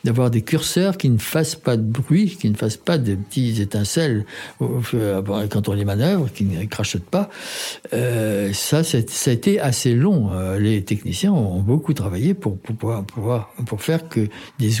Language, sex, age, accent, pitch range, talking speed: French, male, 60-79, French, 105-140 Hz, 190 wpm